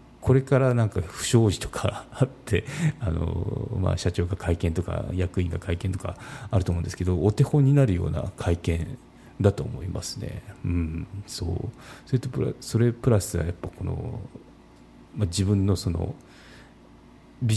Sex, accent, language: male, native, Japanese